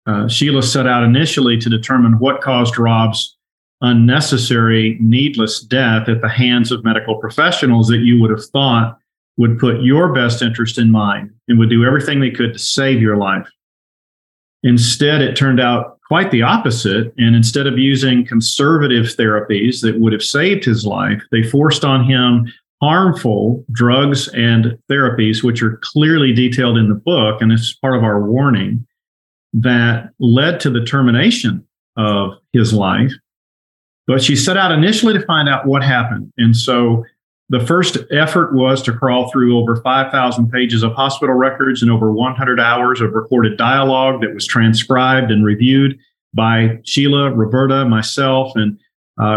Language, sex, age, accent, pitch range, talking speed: English, male, 40-59, American, 115-135 Hz, 165 wpm